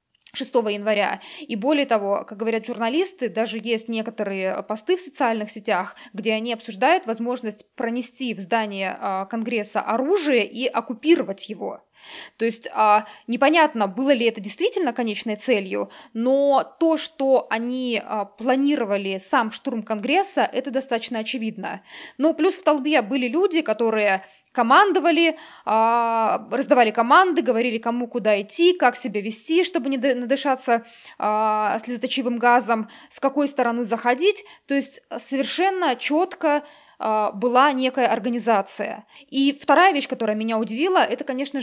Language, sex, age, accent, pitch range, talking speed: Russian, female, 20-39, native, 220-280 Hz, 125 wpm